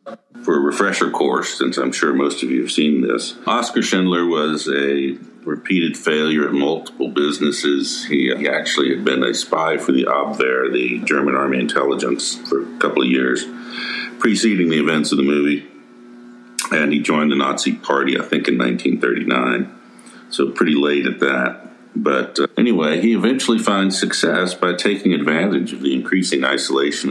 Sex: male